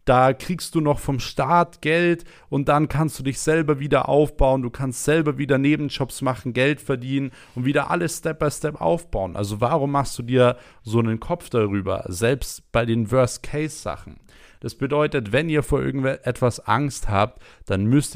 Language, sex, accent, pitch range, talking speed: German, male, German, 105-140 Hz, 170 wpm